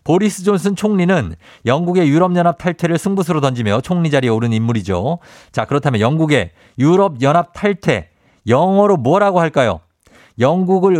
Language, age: Korean, 50-69